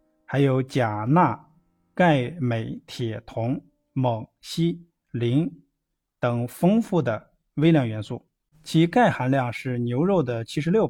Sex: male